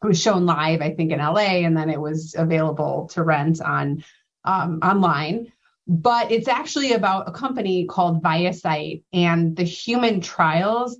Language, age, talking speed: English, 30-49, 165 wpm